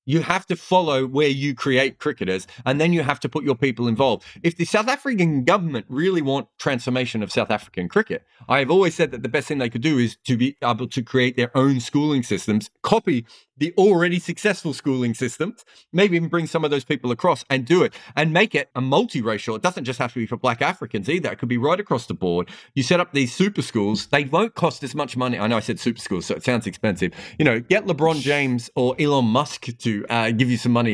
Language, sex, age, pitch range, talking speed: English, male, 40-59, 115-155 Hz, 240 wpm